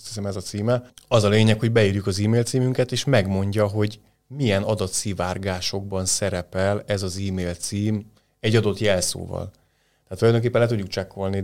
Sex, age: male, 30-49